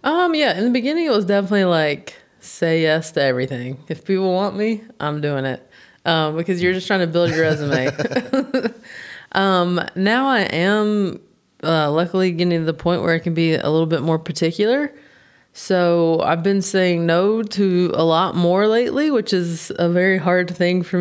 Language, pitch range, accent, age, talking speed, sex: English, 165-220 Hz, American, 20-39, 185 wpm, female